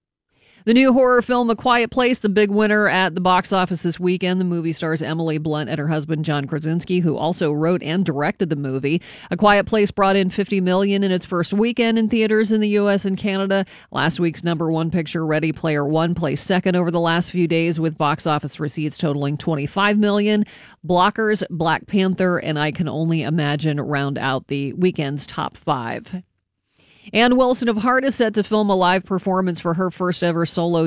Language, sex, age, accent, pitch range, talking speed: English, female, 40-59, American, 160-195 Hz, 200 wpm